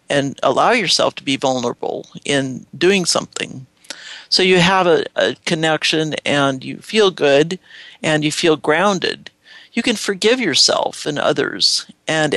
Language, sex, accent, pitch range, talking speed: English, male, American, 145-190 Hz, 145 wpm